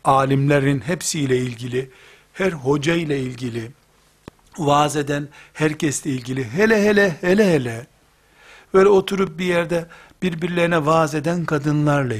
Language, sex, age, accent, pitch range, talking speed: Turkish, male, 60-79, native, 135-170 Hz, 115 wpm